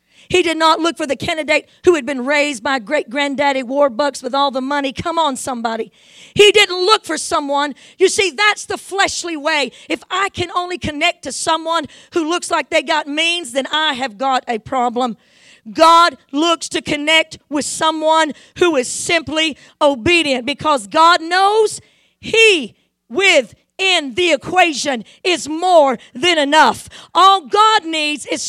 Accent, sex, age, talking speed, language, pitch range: American, female, 40-59, 160 wpm, English, 285-360 Hz